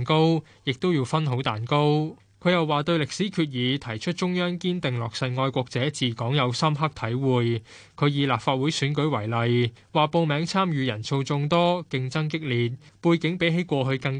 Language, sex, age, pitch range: Chinese, male, 20-39, 120-155 Hz